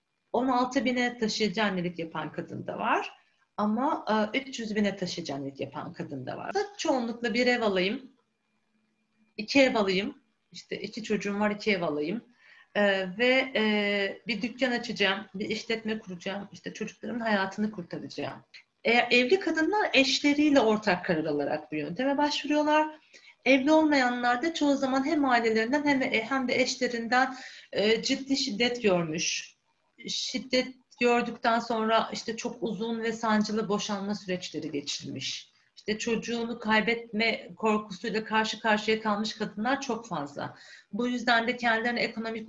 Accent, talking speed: native, 125 wpm